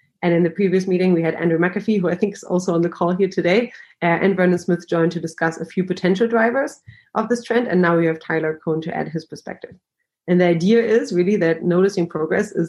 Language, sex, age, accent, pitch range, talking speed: English, female, 30-49, German, 165-185 Hz, 245 wpm